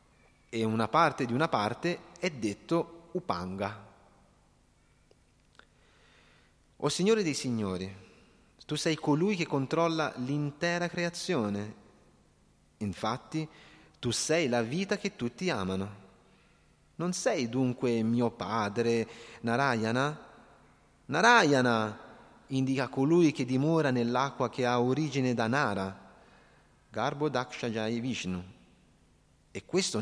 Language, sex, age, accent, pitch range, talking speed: Italian, male, 30-49, native, 110-160 Hz, 100 wpm